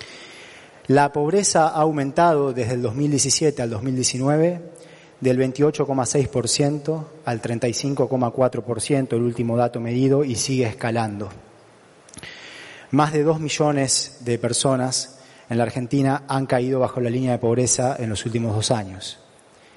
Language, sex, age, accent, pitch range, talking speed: Spanish, male, 30-49, Argentinian, 125-150 Hz, 120 wpm